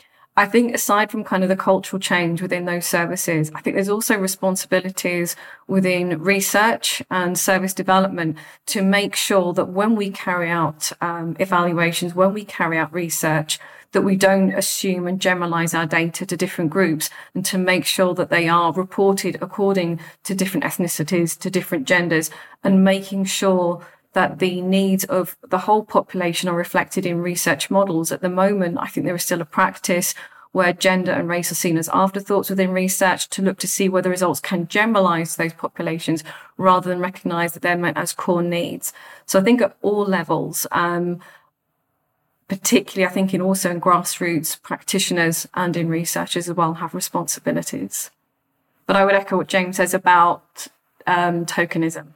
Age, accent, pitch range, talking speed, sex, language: 40-59, British, 170-190 Hz, 170 wpm, female, English